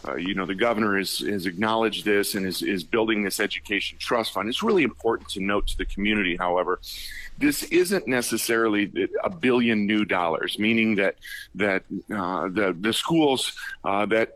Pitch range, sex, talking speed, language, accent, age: 105-125 Hz, male, 180 wpm, English, American, 40-59